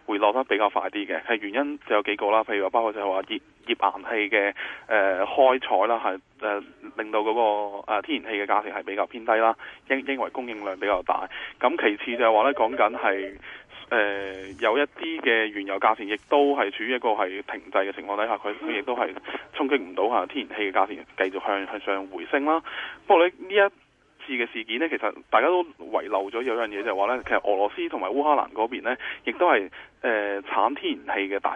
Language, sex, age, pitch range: Chinese, male, 20-39, 100-145 Hz